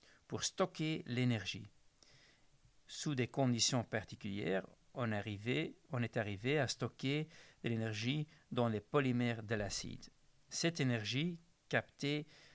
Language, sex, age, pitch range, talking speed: French, male, 50-69, 110-145 Hz, 105 wpm